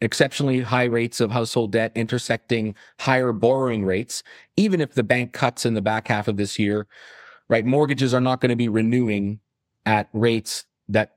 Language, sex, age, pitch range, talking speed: English, male, 30-49, 110-130 Hz, 175 wpm